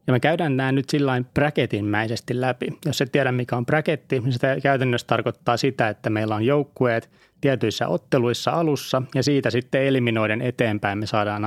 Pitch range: 110-135 Hz